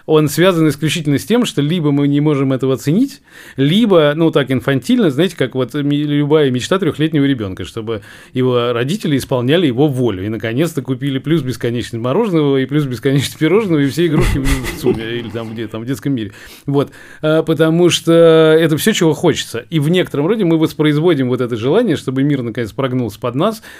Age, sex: 20-39, male